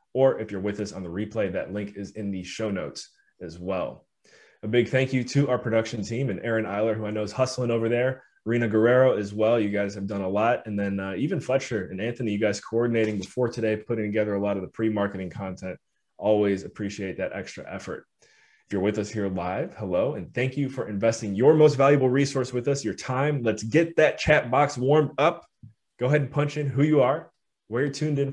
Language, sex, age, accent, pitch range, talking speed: English, male, 20-39, American, 105-130 Hz, 230 wpm